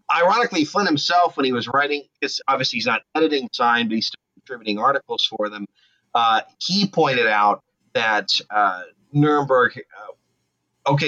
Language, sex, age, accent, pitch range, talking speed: English, male, 30-49, American, 120-145 Hz, 155 wpm